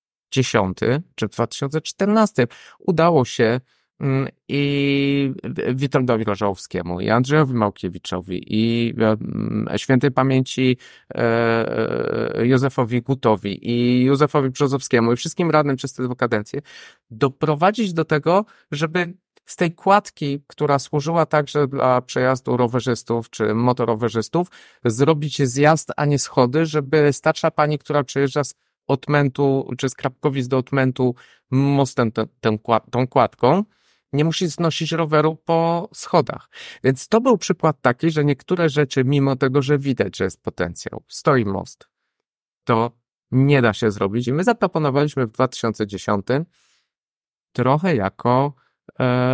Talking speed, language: 125 wpm, Polish